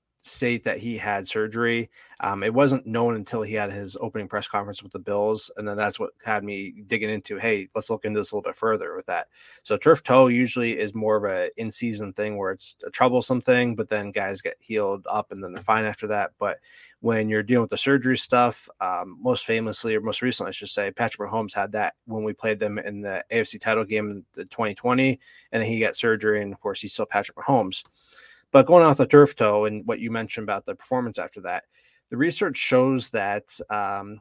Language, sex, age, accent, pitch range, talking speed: English, male, 30-49, American, 105-125 Hz, 230 wpm